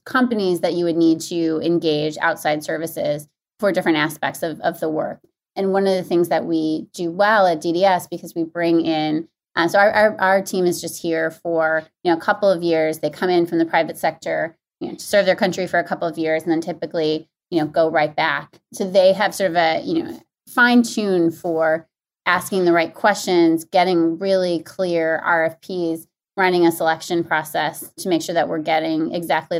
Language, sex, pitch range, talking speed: English, female, 160-185 Hz, 210 wpm